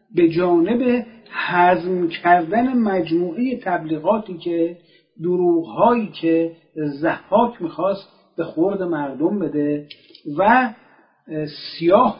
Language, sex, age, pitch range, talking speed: Persian, male, 50-69, 165-230 Hz, 85 wpm